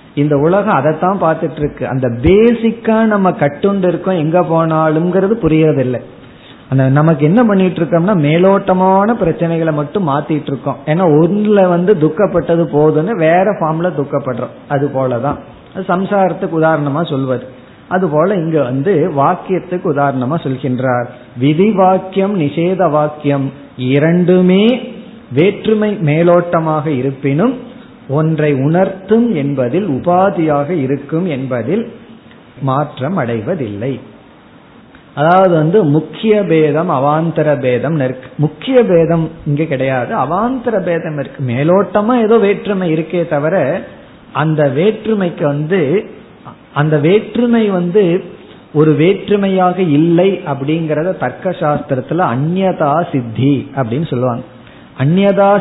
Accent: native